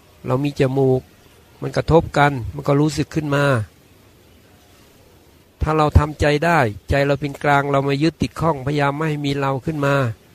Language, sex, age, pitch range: Thai, male, 60-79, 120-150 Hz